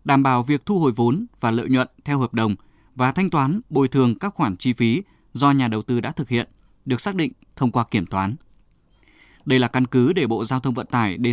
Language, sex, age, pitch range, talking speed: Vietnamese, male, 20-39, 115-150 Hz, 245 wpm